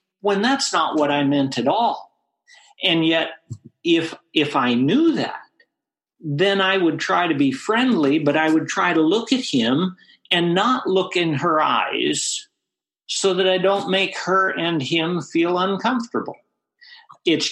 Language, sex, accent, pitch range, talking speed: English, male, American, 140-195 Hz, 160 wpm